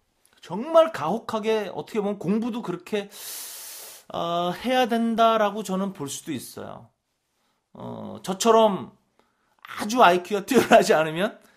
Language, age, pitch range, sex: Korean, 30-49, 165-230 Hz, male